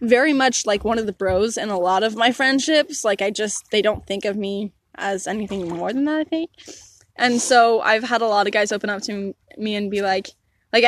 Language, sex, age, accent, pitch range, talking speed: English, female, 10-29, American, 195-235 Hz, 245 wpm